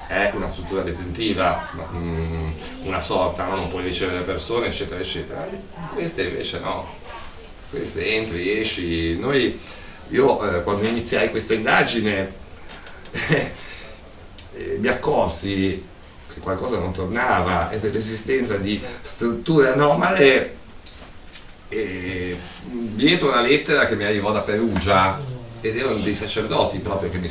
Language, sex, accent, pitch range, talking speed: Italian, male, native, 90-115 Hz, 110 wpm